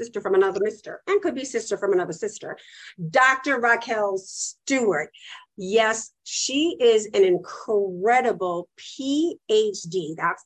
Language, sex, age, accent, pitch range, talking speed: English, female, 50-69, American, 195-245 Hz, 120 wpm